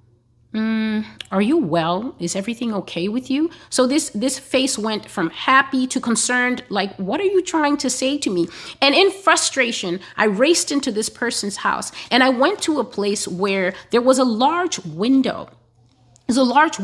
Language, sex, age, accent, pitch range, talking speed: English, female, 30-49, American, 180-265 Hz, 180 wpm